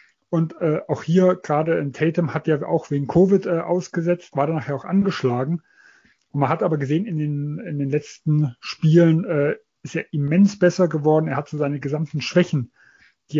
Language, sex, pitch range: German, male, 150-175 Hz